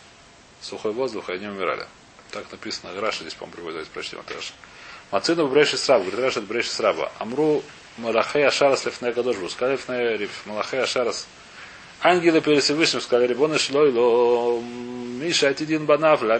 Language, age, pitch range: Russian, 30-49, 120-150 Hz